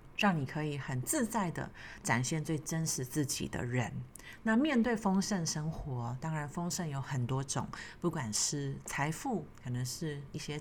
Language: Chinese